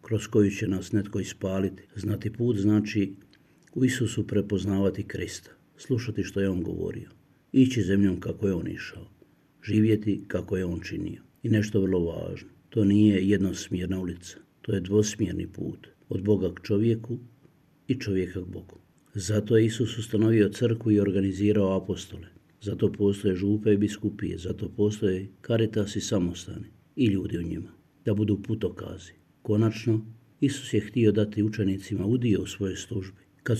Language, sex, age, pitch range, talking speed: Croatian, male, 50-69, 100-115 Hz, 155 wpm